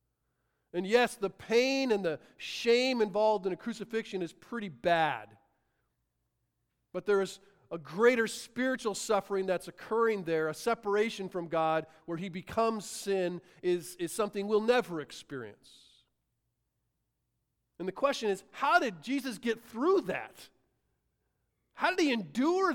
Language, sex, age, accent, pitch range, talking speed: English, male, 40-59, American, 135-195 Hz, 135 wpm